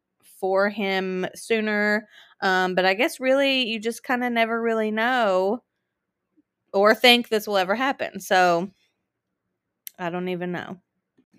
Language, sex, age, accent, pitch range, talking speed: English, female, 20-39, American, 195-235 Hz, 135 wpm